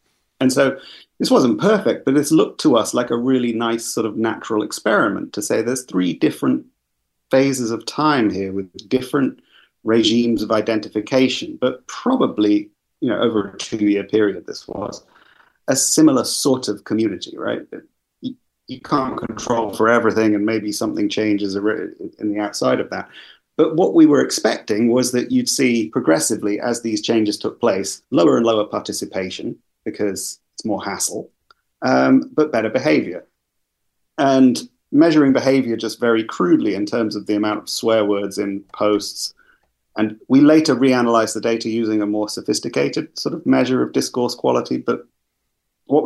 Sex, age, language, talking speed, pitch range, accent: male, 30-49, English, 165 wpm, 105-135 Hz, British